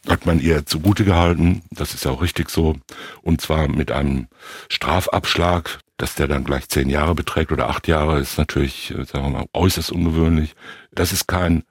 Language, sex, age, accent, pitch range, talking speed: German, male, 60-79, German, 75-90 Hz, 190 wpm